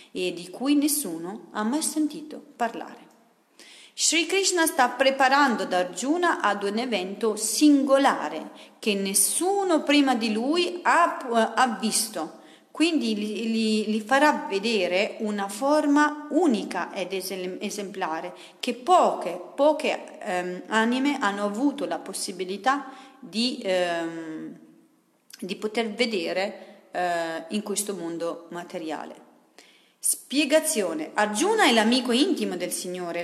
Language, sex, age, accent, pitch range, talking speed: Italian, female, 40-59, native, 195-285 Hz, 110 wpm